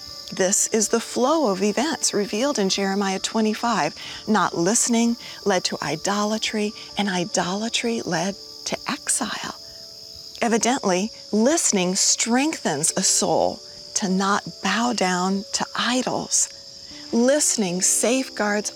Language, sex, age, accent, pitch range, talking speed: English, female, 40-59, American, 185-230 Hz, 105 wpm